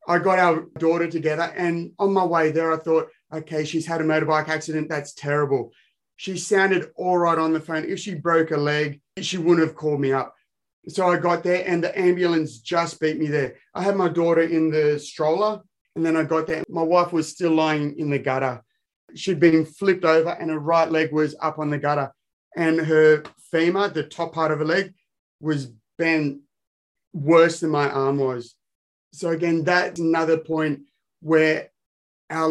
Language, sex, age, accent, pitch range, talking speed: English, male, 30-49, Australian, 150-170 Hz, 195 wpm